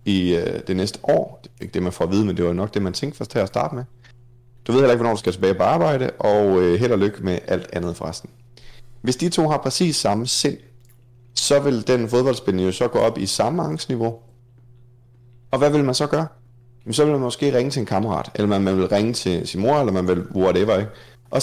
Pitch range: 100-130 Hz